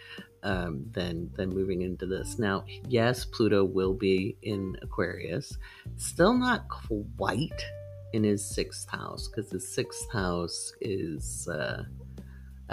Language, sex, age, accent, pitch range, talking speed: English, male, 30-49, American, 95-135 Hz, 125 wpm